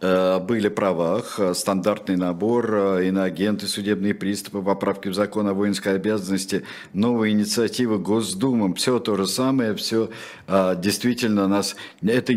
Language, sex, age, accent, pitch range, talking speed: Russian, male, 50-69, native, 95-125 Hz, 120 wpm